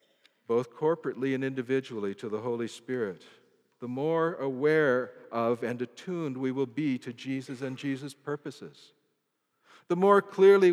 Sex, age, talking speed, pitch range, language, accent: male, 60-79, 140 wpm, 120-155 Hz, English, American